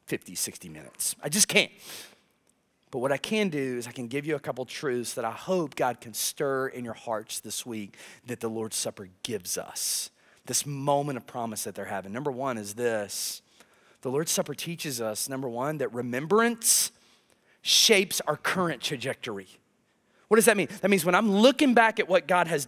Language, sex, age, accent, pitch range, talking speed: English, male, 30-49, American, 175-275 Hz, 195 wpm